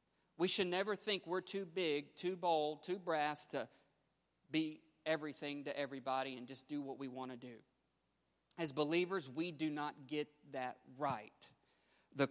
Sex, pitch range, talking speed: male, 135-195 Hz, 160 wpm